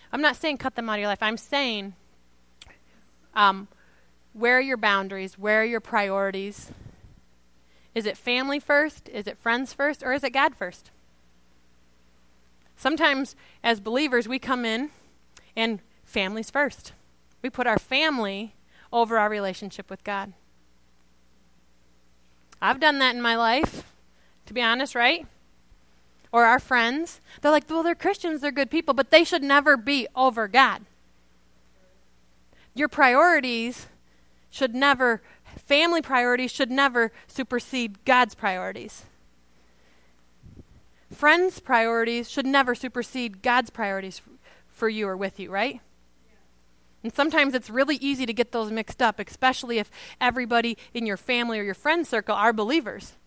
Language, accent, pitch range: English, American, 190-265 Hz